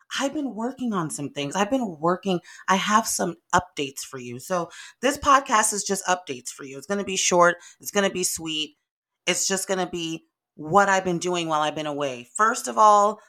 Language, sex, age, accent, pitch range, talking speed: English, female, 30-49, American, 150-195 Hz, 220 wpm